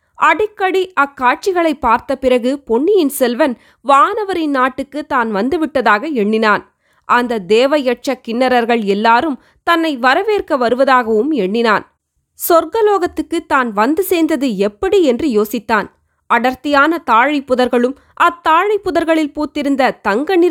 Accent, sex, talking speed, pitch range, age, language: native, female, 95 wpm, 210-295 Hz, 20-39, Tamil